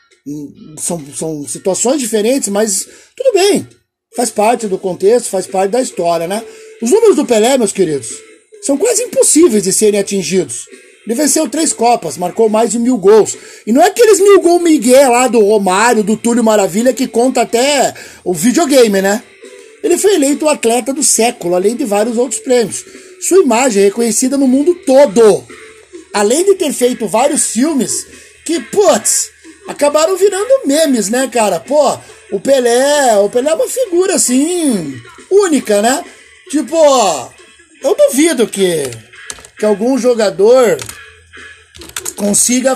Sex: male